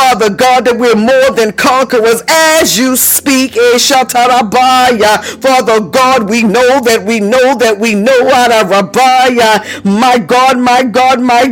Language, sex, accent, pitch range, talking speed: English, female, American, 225-260 Hz, 145 wpm